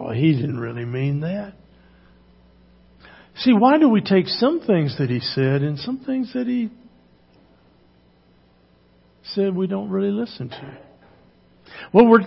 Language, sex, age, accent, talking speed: English, male, 60-79, American, 140 wpm